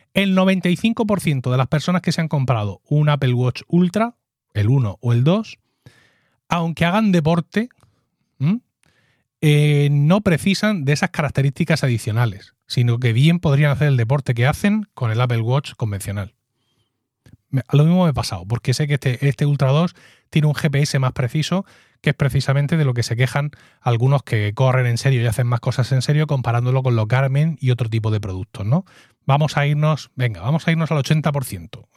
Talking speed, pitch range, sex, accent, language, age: 185 wpm, 120-150 Hz, male, Spanish, Spanish, 30-49